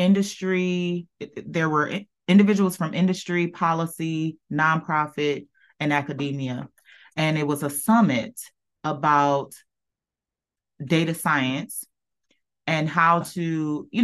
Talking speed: 95 wpm